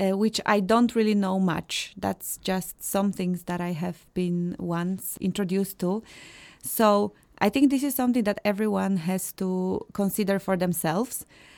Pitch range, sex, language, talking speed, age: 185-225 Hz, female, English, 160 wpm, 20-39